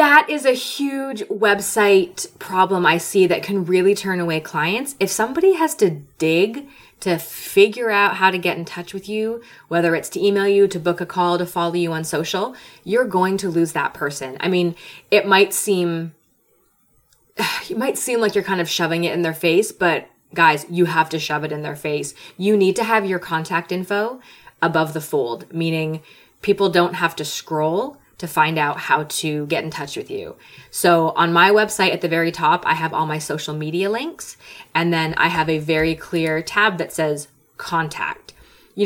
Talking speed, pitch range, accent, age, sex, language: 200 wpm, 160-200 Hz, American, 20-39, female, English